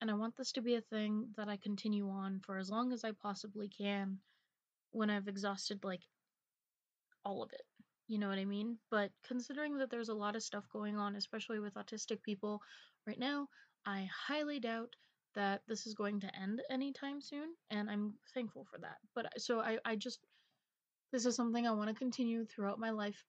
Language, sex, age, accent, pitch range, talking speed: English, female, 20-39, American, 195-225 Hz, 200 wpm